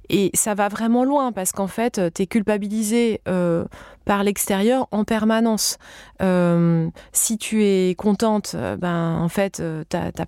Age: 20-39